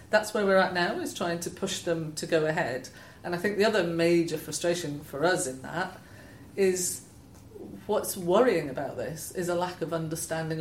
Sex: female